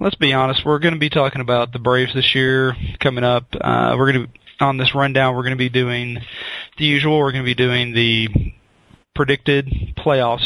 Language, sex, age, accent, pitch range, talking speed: English, male, 40-59, American, 120-145 Hz, 210 wpm